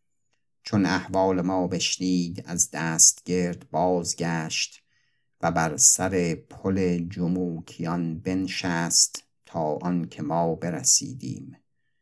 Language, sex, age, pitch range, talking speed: Persian, male, 50-69, 85-100 Hz, 90 wpm